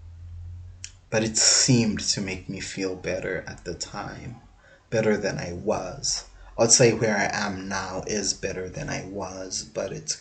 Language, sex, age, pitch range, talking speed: English, male, 30-49, 95-115 Hz, 165 wpm